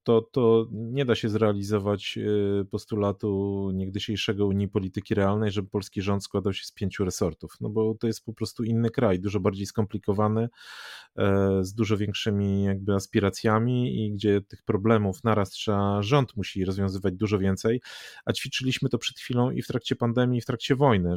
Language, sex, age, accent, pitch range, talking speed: Polish, male, 30-49, native, 105-125 Hz, 165 wpm